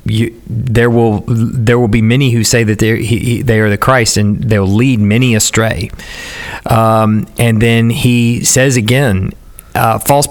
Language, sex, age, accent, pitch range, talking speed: English, male, 40-59, American, 110-135 Hz, 165 wpm